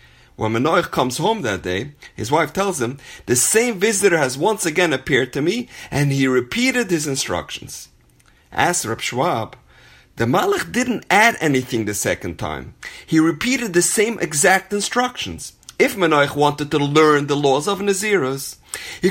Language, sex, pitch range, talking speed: English, male, 120-195 Hz, 160 wpm